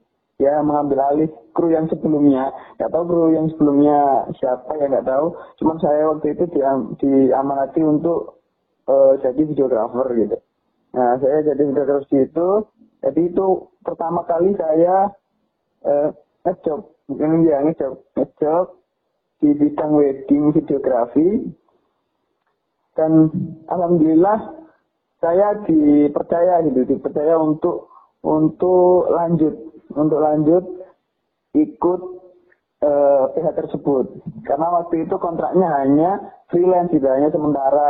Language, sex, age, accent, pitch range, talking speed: Indonesian, male, 20-39, native, 145-175 Hz, 105 wpm